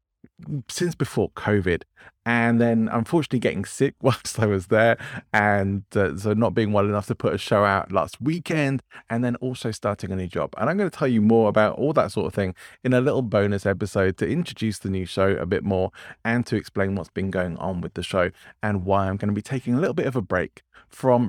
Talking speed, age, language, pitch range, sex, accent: 235 wpm, 30-49, English, 100-125 Hz, male, British